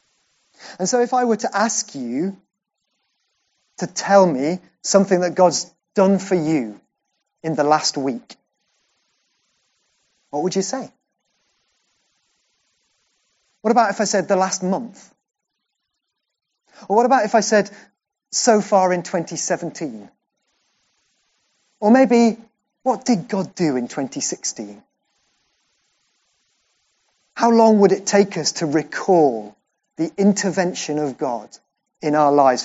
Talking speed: 120 wpm